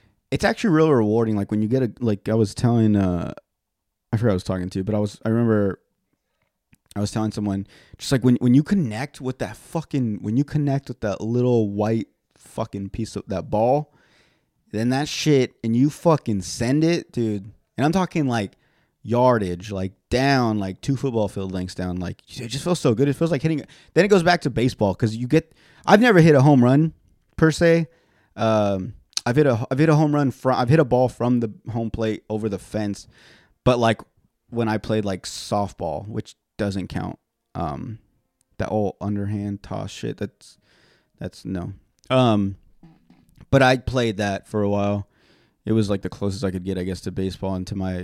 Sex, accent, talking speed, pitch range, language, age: male, American, 205 wpm, 100-130 Hz, English, 20-39